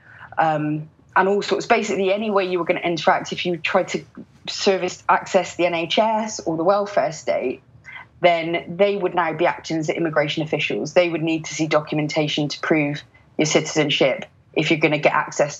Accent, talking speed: British, 190 wpm